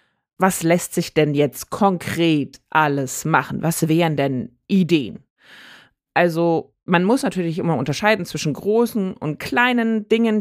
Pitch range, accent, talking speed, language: 155-210 Hz, German, 135 wpm, German